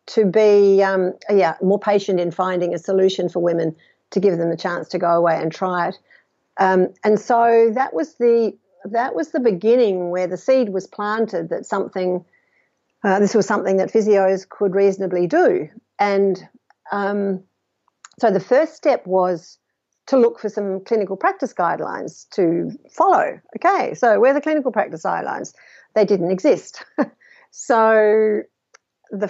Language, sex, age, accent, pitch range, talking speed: English, female, 50-69, Australian, 180-215 Hz, 160 wpm